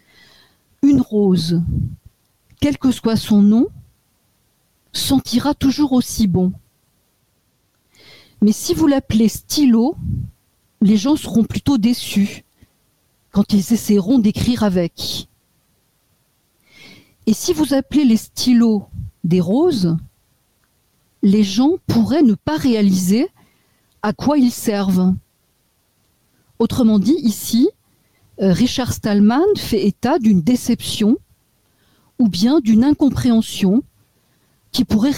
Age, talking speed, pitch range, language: 50-69, 100 wpm, 200-260 Hz, French